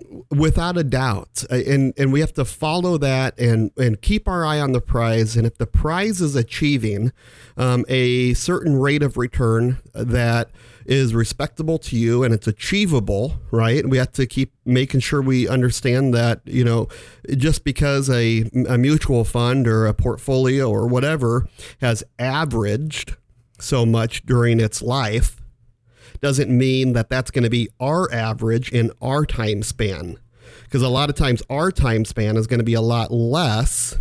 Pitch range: 115-135 Hz